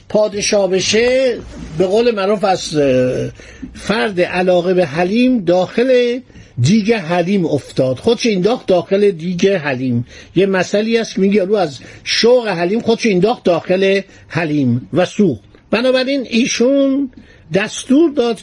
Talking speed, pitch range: 130 wpm, 160-225 Hz